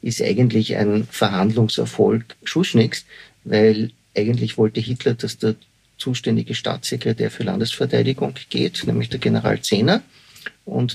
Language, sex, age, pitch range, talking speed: German, male, 50-69, 110-130 Hz, 115 wpm